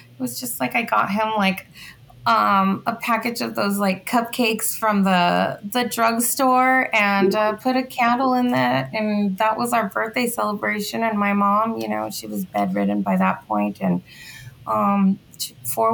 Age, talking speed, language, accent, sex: 20-39, 175 wpm, English, American, female